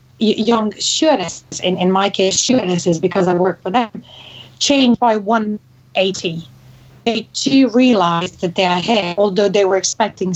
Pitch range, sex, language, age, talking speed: 175-225 Hz, female, English, 30-49, 155 wpm